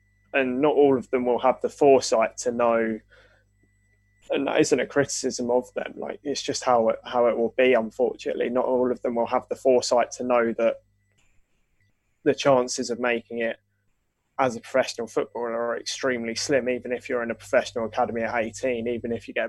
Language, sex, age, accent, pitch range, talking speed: English, male, 20-39, British, 105-125 Hz, 195 wpm